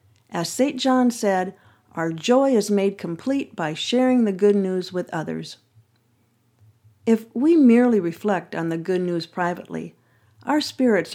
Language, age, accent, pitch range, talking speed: English, 50-69, American, 140-215 Hz, 145 wpm